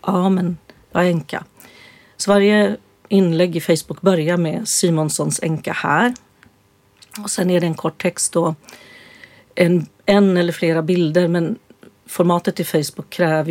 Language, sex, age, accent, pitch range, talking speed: Swedish, female, 40-59, native, 165-190 Hz, 140 wpm